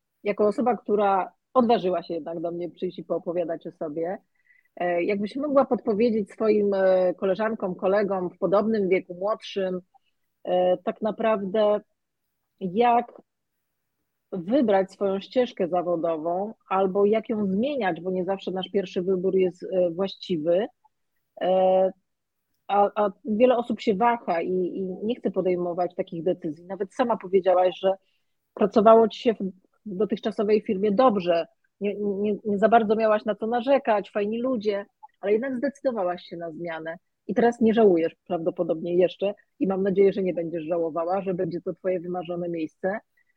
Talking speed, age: 145 wpm, 40-59